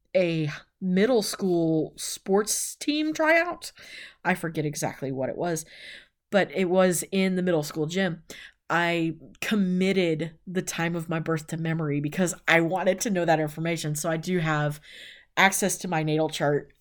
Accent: American